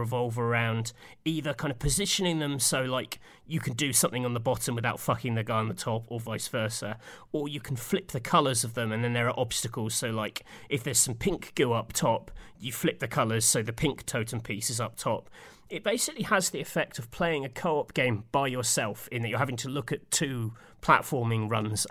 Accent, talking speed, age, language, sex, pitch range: British, 225 wpm, 30-49, English, male, 115-140 Hz